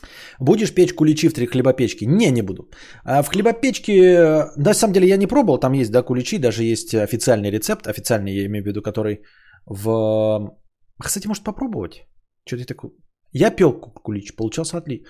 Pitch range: 110-155 Hz